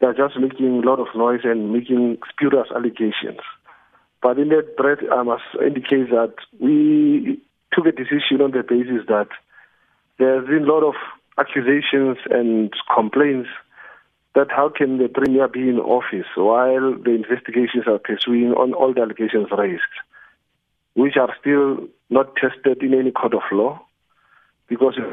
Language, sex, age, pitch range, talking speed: English, male, 50-69, 115-140 Hz, 155 wpm